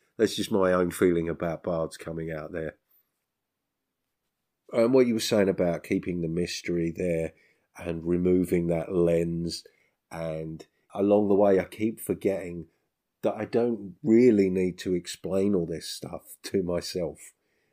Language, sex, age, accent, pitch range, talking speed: English, male, 40-59, British, 85-100 Hz, 145 wpm